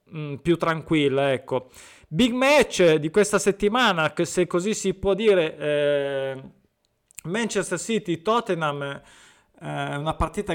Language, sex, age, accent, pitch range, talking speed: Italian, male, 20-39, native, 155-205 Hz, 115 wpm